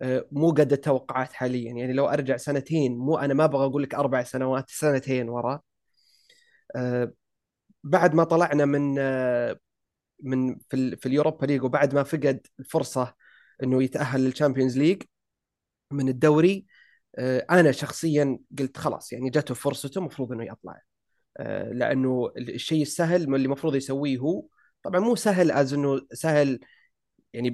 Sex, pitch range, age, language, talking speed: male, 130-155 Hz, 30-49, Arabic, 135 wpm